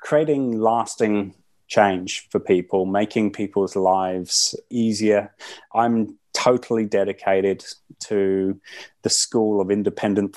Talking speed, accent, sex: 100 wpm, British, male